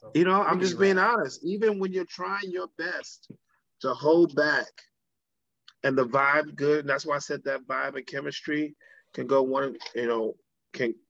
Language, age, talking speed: English, 30-49, 185 wpm